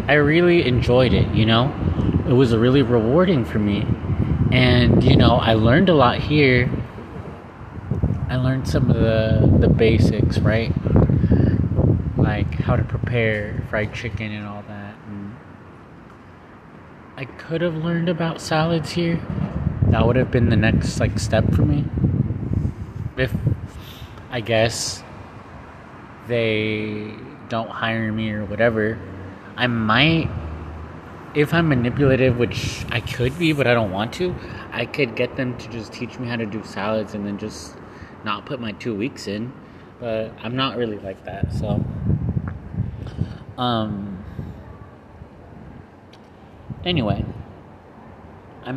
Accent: American